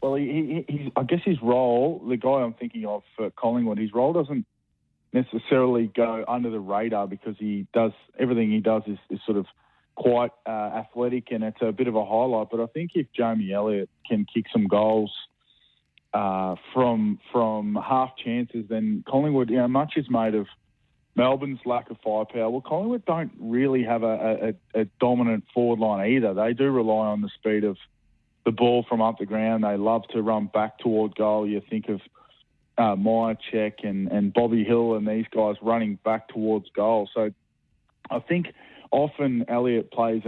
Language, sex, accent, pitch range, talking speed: English, male, Australian, 105-120 Hz, 180 wpm